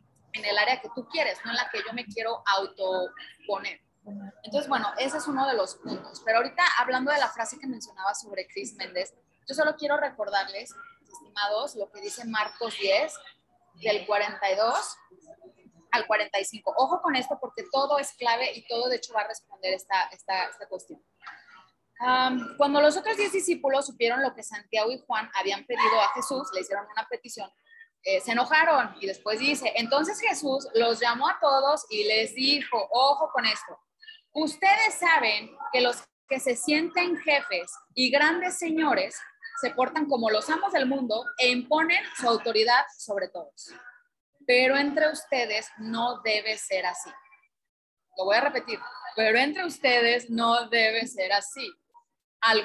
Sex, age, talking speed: female, 30-49, 165 wpm